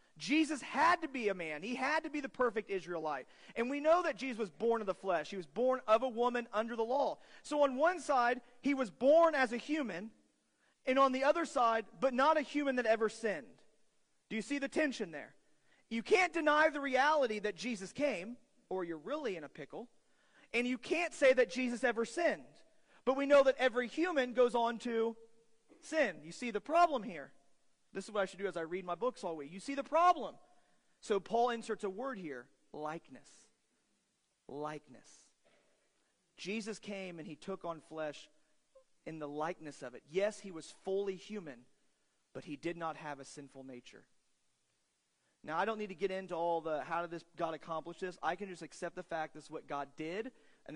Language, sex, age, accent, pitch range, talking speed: English, male, 40-59, American, 170-260 Hz, 205 wpm